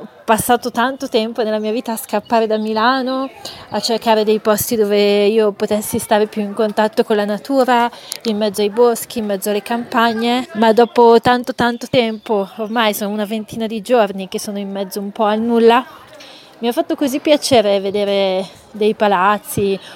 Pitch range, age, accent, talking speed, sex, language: 195-225 Hz, 30-49, native, 180 wpm, female, Italian